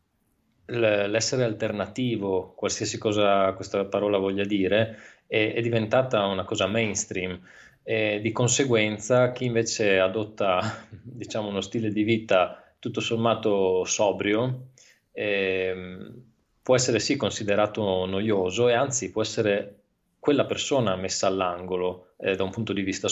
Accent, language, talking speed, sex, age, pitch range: native, Italian, 125 wpm, male, 20-39, 95-115 Hz